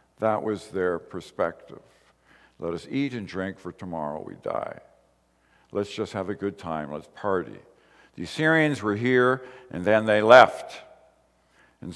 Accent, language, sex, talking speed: American, English, male, 150 wpm